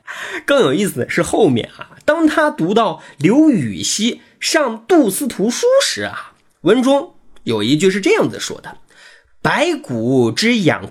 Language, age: Chinese, 30-49